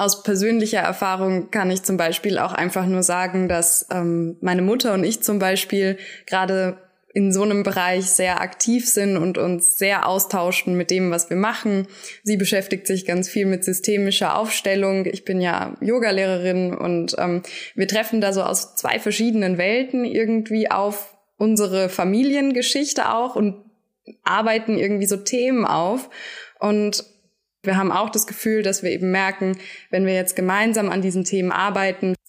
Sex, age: female, 20-39